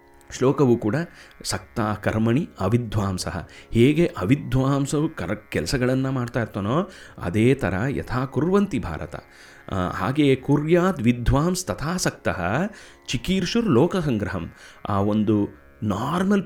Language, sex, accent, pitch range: Kannada, male, native, 100-170 Hz